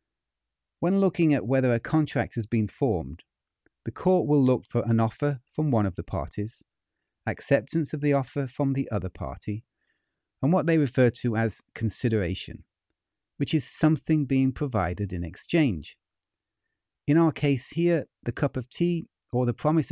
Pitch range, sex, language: 105-140 Hz, male, English